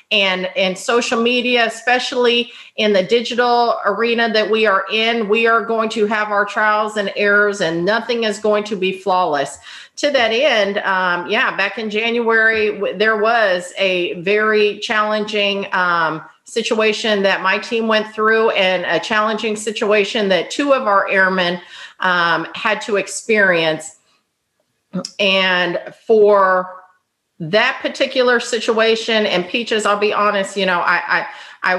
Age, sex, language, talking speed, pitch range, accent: 40-59, female, English, 145 wpm, 190-225 Hz, American